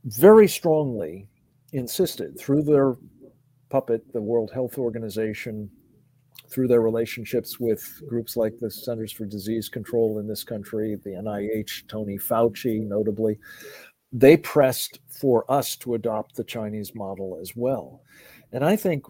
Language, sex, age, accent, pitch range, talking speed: English, male, 50-69, American, 115-140 Hz, 135 wpm